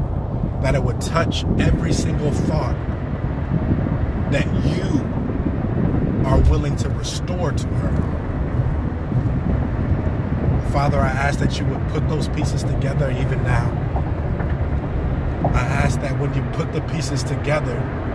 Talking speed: 120 wpm